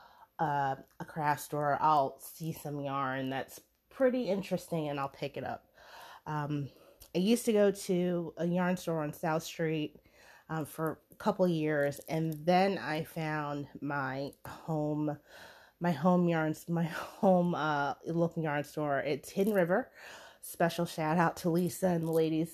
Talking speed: 155 wpm